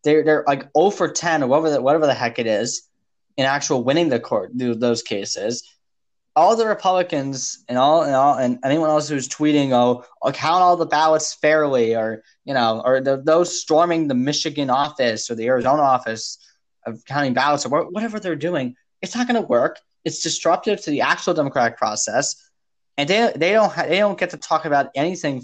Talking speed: 190 wpm